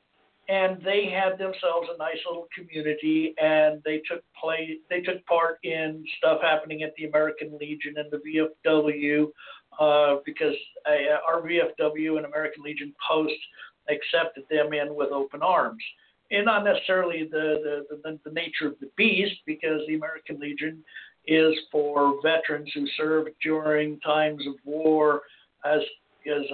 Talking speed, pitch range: 145 wpm, 150-175 Hz